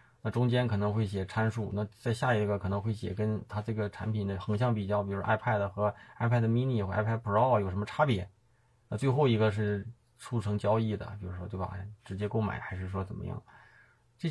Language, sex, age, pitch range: Chinese, male, 20-39, 100-115 Hz